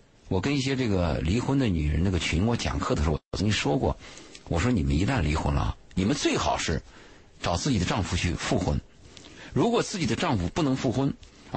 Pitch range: 85-130 Hz